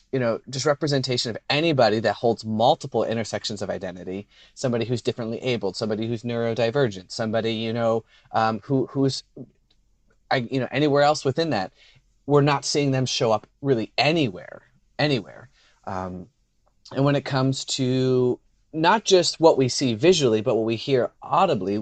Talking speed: 140 wpm